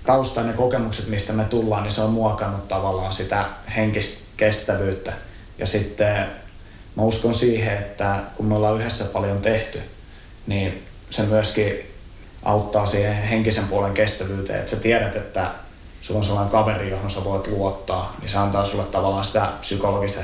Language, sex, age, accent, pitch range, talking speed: Finnish, male, 20-39, native, 100-110 Hz, 155 wpm